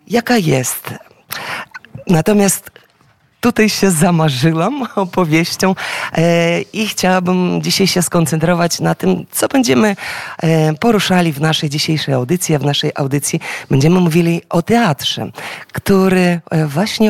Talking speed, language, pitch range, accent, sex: 110 wpm, Polish, 145-180 Hz, native, female